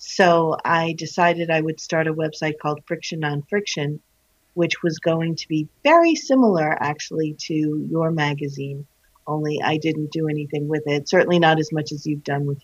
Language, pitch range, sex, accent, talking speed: English, 150-175 Hz, female, American, 180 wpm